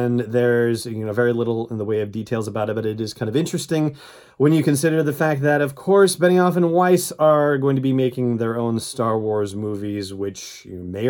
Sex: male